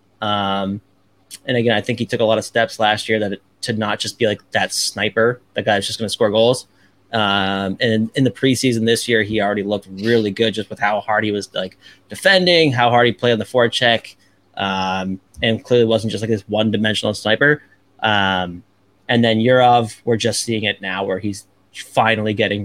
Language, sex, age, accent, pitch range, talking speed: English, male, 20-39, American, 100-120 Hz, 210 wpm